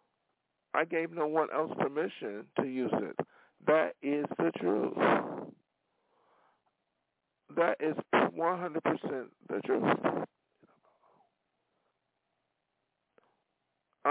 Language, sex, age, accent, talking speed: English, male, 50-69, American, 75 wpm